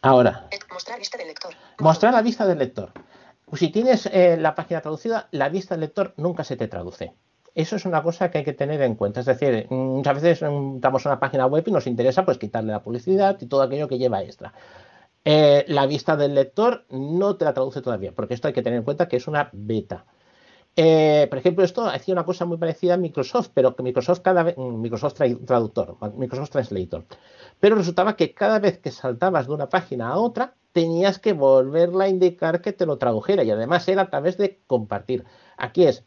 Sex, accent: male, Spanish